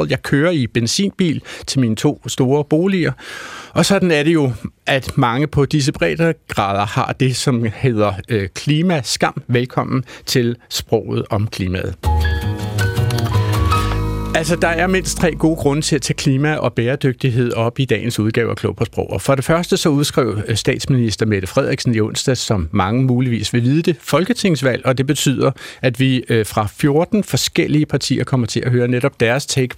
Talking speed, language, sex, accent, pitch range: 170 wpm, Danish, male, native, 115-150 Hz